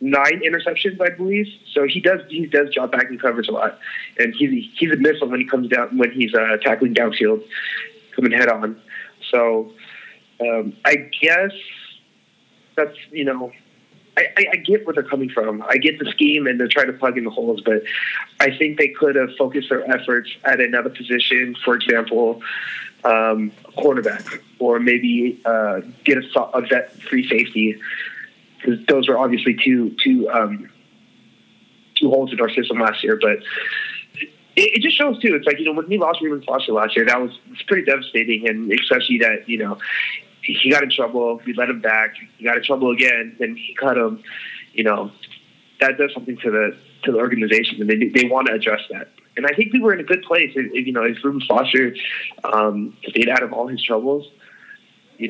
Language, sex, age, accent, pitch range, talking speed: English, male, 30-49, American, 120-185 Hz, 195 wpm